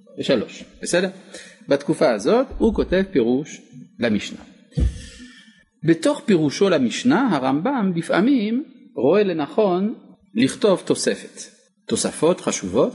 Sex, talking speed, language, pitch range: male, 90 wpm, Hebrew, 170-250 Hz